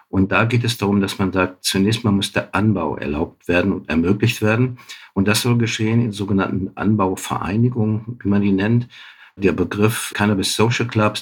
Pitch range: 95-115 Hz